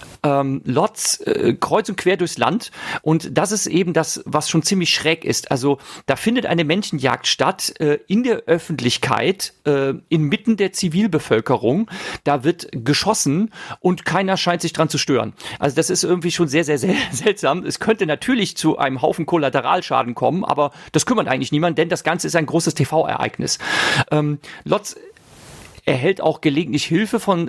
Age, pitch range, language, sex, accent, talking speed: 40-59, 145-175 Hz, German, male, German, 170 wpm